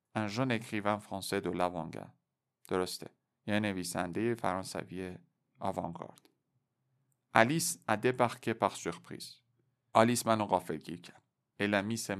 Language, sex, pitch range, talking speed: Persian, male, 95-130 Hz, 105 wpm